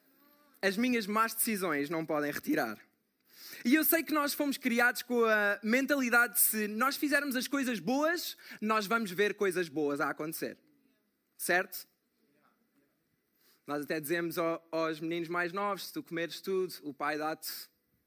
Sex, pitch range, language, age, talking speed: male, 170-265 Hz, Portuguese, 20-39, 155 wpm